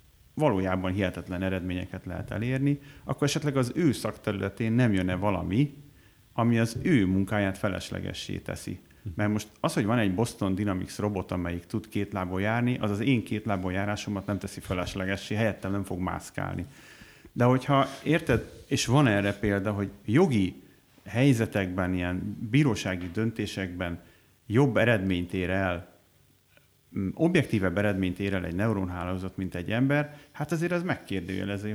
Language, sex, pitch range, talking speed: Hungarian, male, 95-125 Hz, 145 wpm